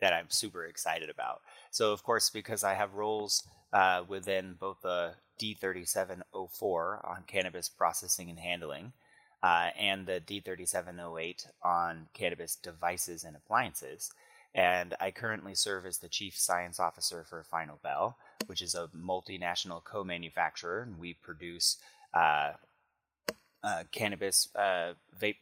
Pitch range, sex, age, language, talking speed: 90-105 Hz, male, 30-49, English, 130 wpm